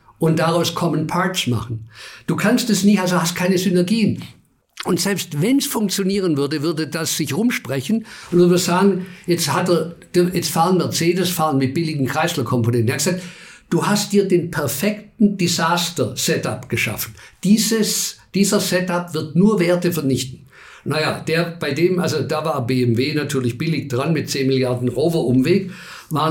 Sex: male